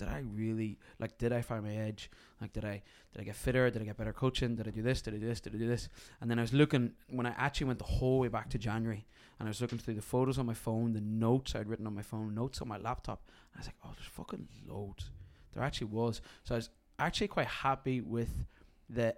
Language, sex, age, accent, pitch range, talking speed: English, male, 20-39, British, 110-125 Hz, 270 wpm